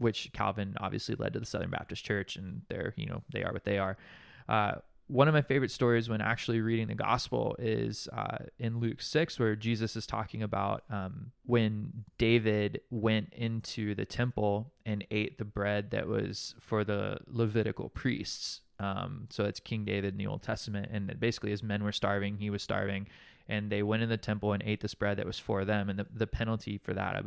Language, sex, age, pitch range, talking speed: English, male, 20-39, 105-120 Hz, 210 wpm